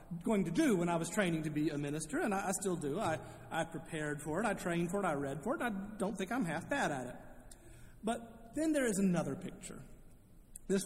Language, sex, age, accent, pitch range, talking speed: English, male, 40-59, American, 150-200 Hz, 240 wpm